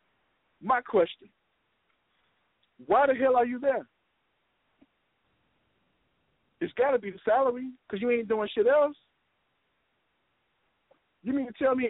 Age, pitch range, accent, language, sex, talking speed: 50-69, 160-230 Hz, American, English, male, 125 wpm